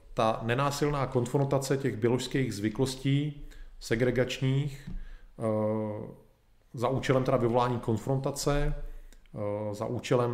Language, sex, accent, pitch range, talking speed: Czech, male, native, 105-125 Hz, 80 wpm